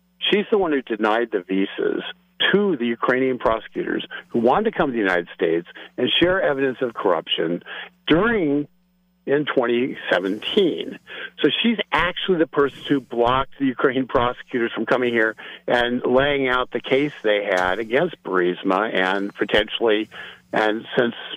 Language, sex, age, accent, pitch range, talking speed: English, male, 50-69, American, 115-185 Hz, 150 wpm